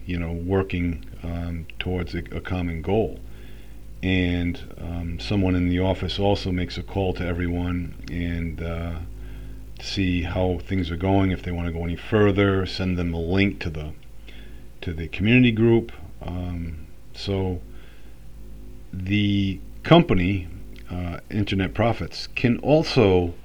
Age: 40-59